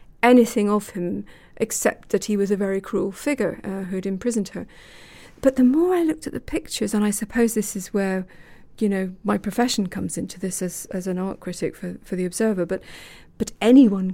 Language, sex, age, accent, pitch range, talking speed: English, female, 40-59, British, 190-230 Hz, 205 wpm